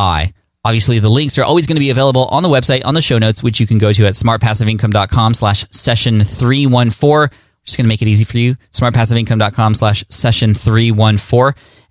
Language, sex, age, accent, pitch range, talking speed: English, male, 20-39, American, 105-125 Hz, 180 wpm